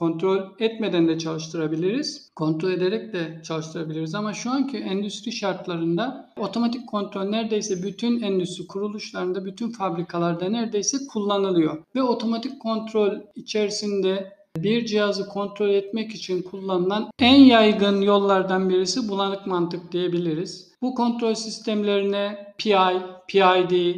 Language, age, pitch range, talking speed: Turkish, 50-69, 180-225 Hz, 115 wpm